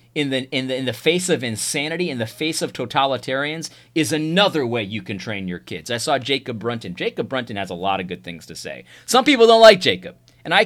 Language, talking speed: English, 240 wpm